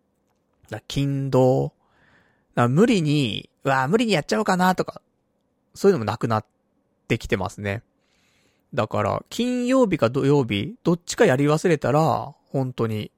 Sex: male